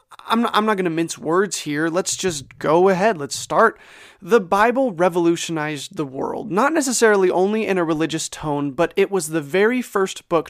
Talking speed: 185 wpm